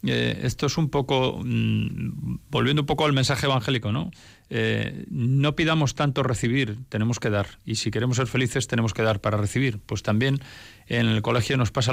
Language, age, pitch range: Spanish, 40-59, 110-145 Hz